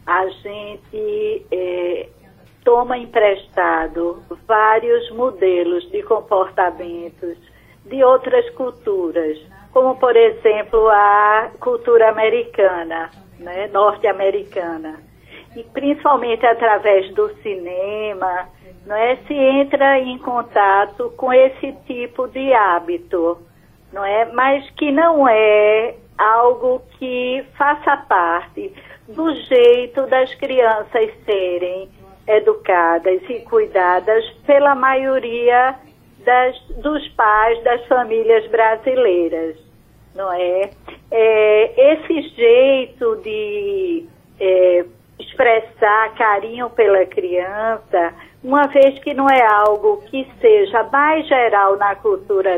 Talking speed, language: 90 wpm, Portuguese